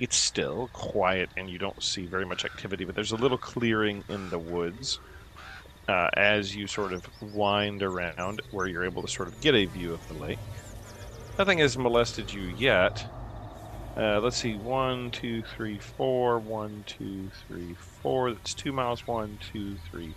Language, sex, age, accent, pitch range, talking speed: English, male, 40-59, American, 85-115 Hz, 175 wpm